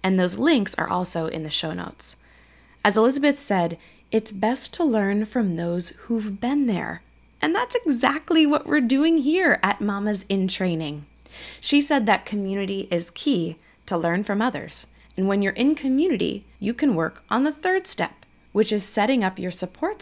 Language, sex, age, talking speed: English, female, 20-39, 180 wpm